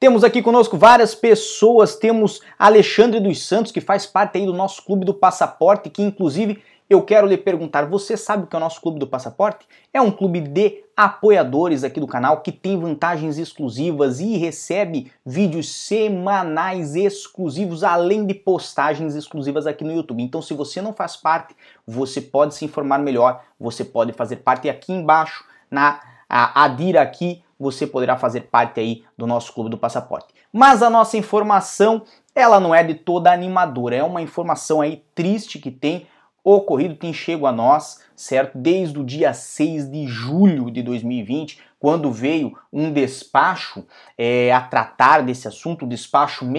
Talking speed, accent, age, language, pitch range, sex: 165 wpm, Brazilian, 20-39, Portuguese, 140-200 Hz, male